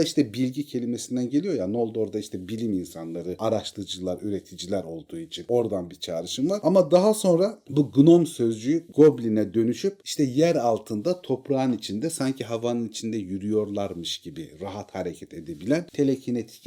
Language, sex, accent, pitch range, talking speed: Turkish, male, native, 100-145 Hz, 150 wpm